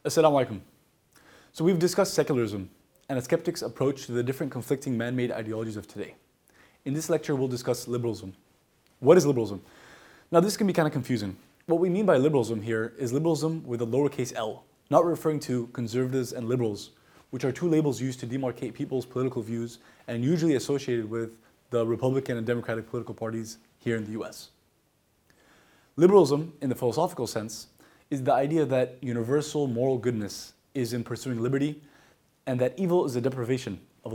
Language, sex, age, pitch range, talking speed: English, male, 20-39, 115-140 Hz, 175 wpm